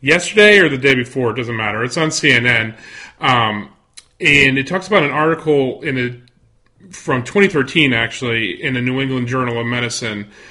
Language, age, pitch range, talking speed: English, 30-49, 120-150 Hz, 170 wpm